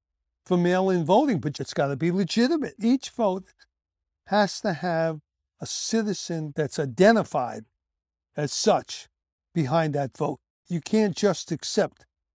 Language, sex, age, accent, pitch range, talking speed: English, male, 60-79, American, 145-205 Hz, 130 wpm